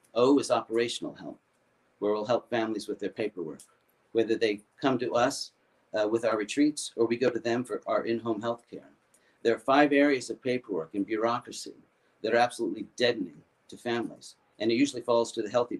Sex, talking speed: male, 195 wpm